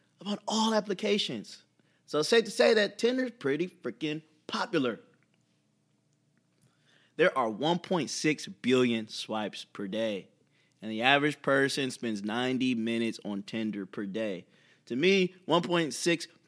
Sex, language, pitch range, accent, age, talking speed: male, English, 125-210 Hz, American, 30-49, 125 wpm